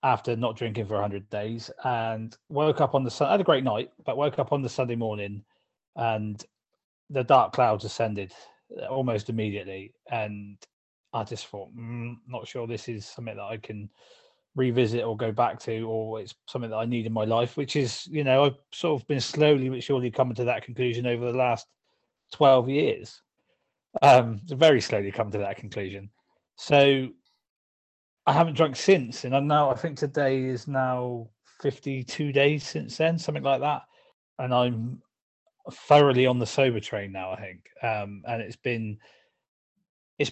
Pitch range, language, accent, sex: 110-135 Hz, English, British, male